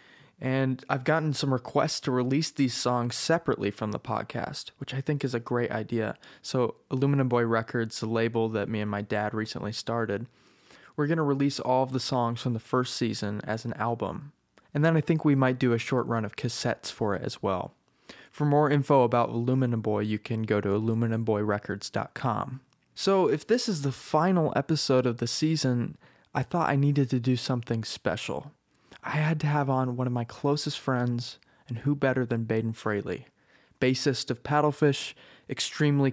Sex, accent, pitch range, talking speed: male, American, 115-140 Hz, 190 wpm